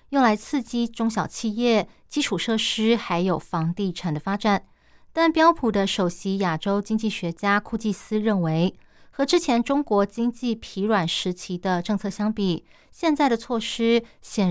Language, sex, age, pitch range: Chinese, female, 20-39, 185-235 Hz